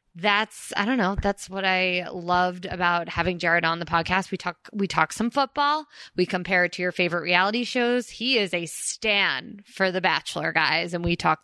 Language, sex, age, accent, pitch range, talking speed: English, female, 20-39, American, 180-240 Hz, 205 wpm